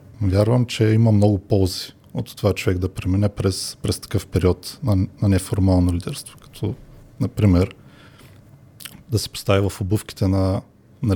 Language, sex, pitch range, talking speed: Bulgarian, male, 100-130 Hz, 145 wpm